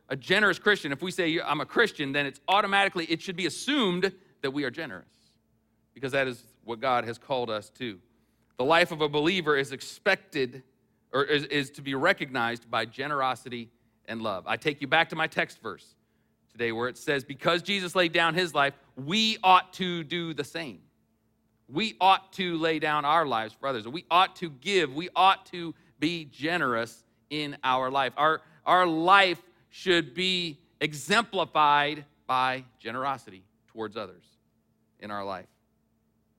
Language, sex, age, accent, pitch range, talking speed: English, male, 40-59, American, 135-180 Hz, 170 wpm